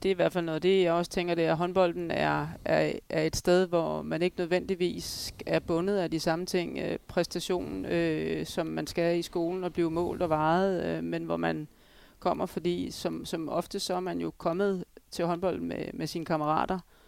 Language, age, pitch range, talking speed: Danish, 30-49, 160-180 Hz, 210 wpm